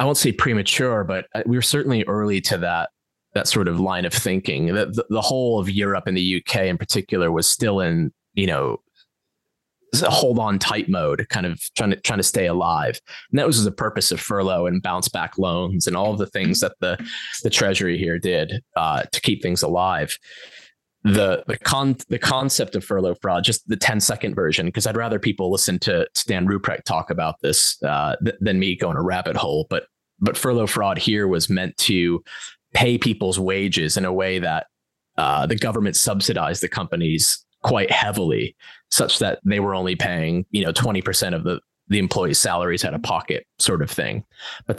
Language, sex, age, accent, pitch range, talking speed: English, male, 20-39, American, 90-115 Hz, 200 wpm